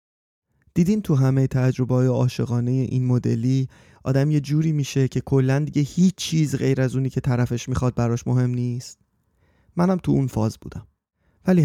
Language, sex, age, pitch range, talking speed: Persian, male, 30-49, 125-160 Hz, 160 wpm